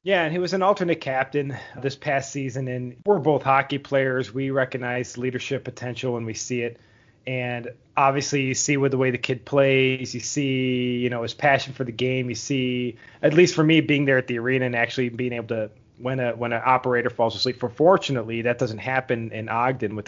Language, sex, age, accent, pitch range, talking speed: English, male, 30-49, American, 120-140 Hz, 220 wpm